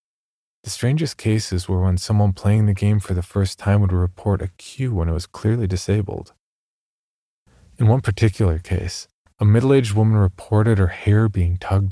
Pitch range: 90-105 Hz